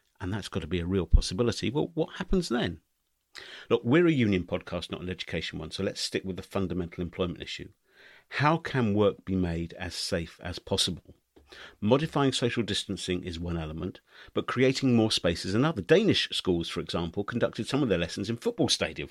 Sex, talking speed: male, 195 wpm